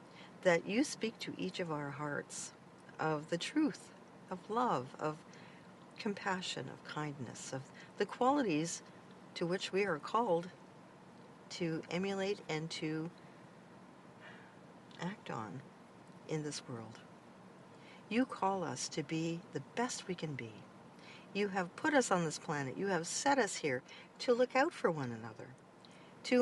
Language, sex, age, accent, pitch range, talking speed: English, female, 50-69, American, 160-225 Hz, 145 wpm